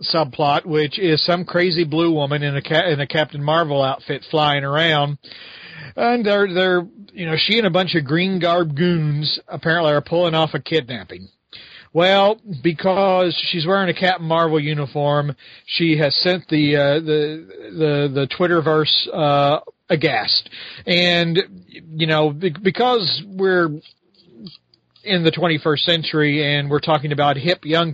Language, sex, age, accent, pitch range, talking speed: English, male, 40-59, American, 145-175 Hz, 150 wpm